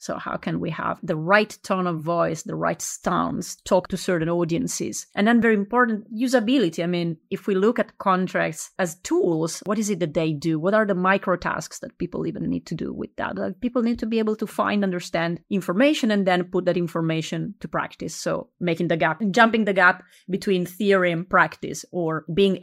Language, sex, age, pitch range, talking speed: English, female, 30-49, 175-215 Hz, 215 wpm